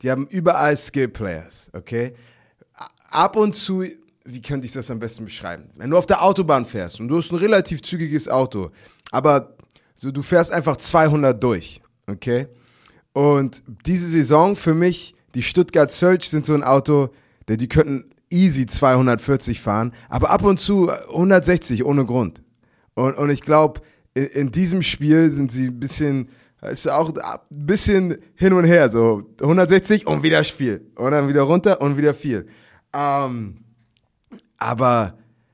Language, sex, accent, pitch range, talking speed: German, male, German, 115-160 Hz, 160 wpm